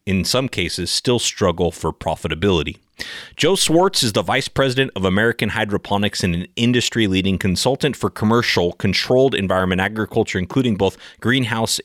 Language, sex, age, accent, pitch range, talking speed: English, male, 30-49, American, 95-125 Hz, 140 wpm